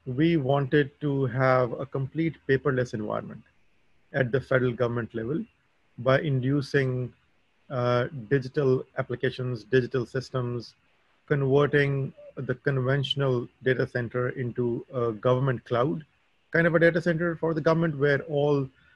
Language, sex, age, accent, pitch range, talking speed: English, male, 30-49, Indian, 130-155 Hz, 125 wpm